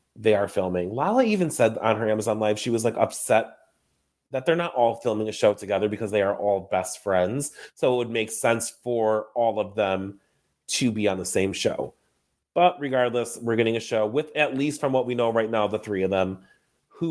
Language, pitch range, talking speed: English, 105-130 Hz, 220 wpm